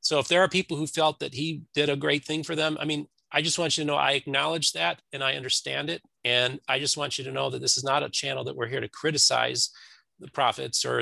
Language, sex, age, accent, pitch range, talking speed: English, male, 40-59, American, 125-150 Hz, 280 wpm